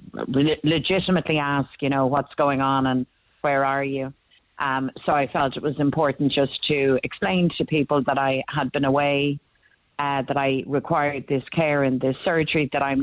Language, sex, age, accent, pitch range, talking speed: English, female, 30-49, Irish, 140-155 Hz, 180 wpm